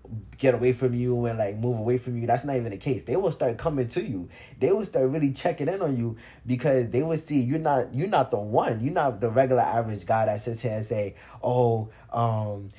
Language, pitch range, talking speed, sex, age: English, 105-130 Hz, 245 wpm, male, 20-39